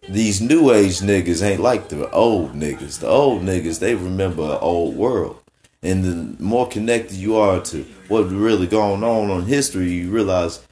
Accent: American